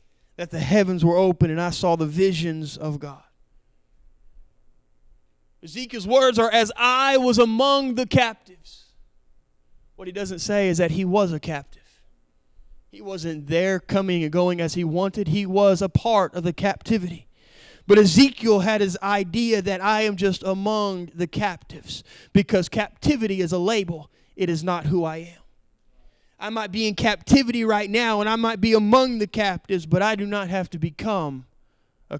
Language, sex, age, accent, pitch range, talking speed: German, male, 20-39, American, 155-215 Hz, 170 wpm